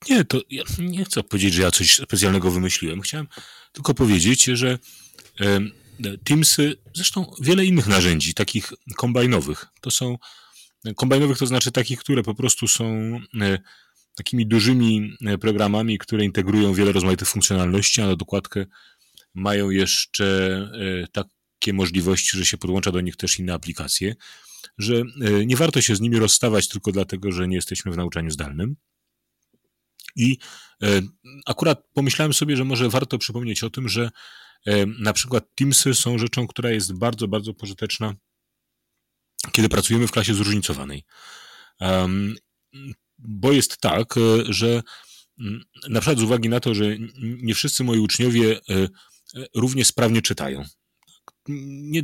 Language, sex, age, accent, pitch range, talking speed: Polish, male, 30-49, native, 100-125 Hz, 135 wpm